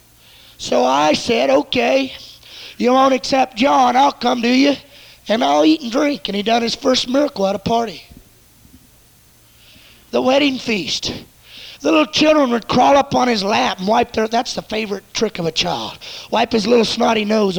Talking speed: 180 wpm